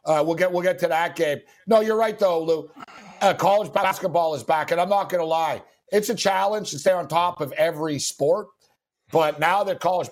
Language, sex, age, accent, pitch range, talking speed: English, male, 60-79, American, 155-195 Hz, 225 wpm